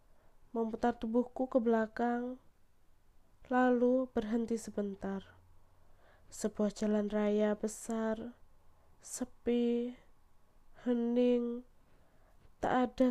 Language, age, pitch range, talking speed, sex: Indonesian, 20-39, 215-245 Hz, 70 wpm, female